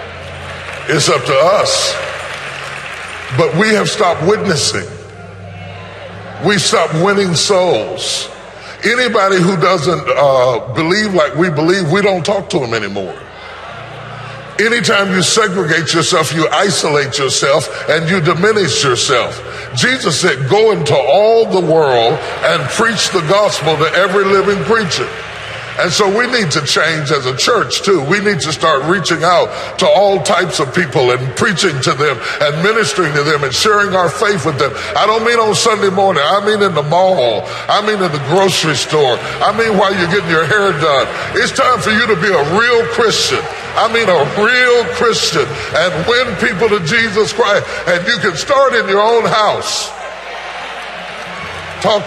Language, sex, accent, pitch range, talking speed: English, female, American, 160-210 Hz, 165 wpm